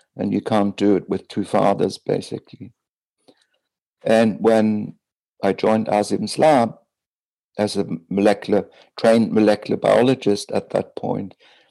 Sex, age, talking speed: male, 60-79, 125 wpm